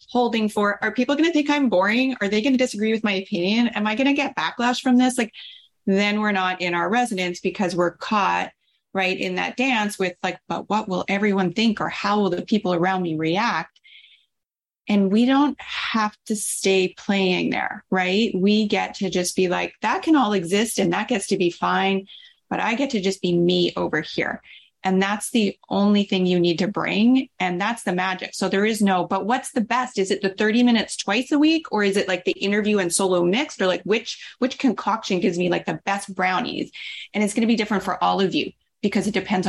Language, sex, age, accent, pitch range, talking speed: English, female, 30-49, American, 185-225 Hz, 230 wpm